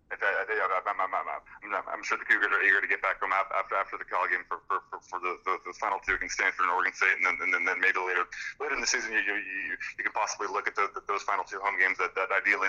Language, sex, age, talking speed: English, male, 30-49, 300 wpm